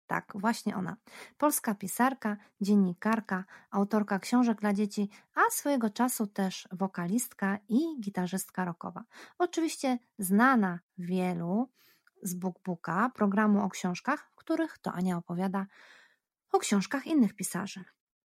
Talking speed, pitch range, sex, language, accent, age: 120 wpm, 185-225 Hz, female, Polish, native, 20-39